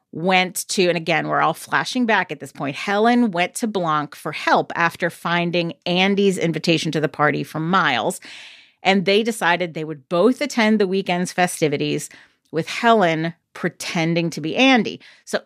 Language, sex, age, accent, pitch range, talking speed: English, female, 40-59, American, 160-215 Hz, 165 wpm